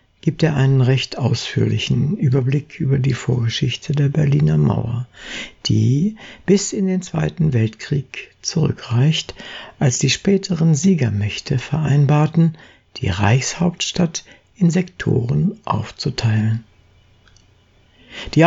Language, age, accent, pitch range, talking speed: German, 60-79, German, 120-160 Hz, 95 wpm